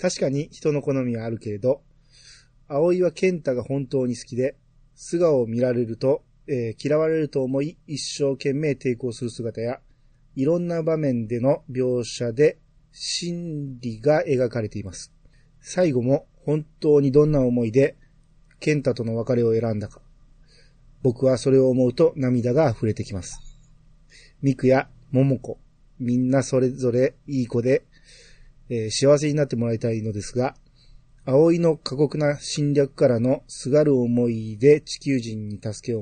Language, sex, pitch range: Japanese, male, 120-150 Hz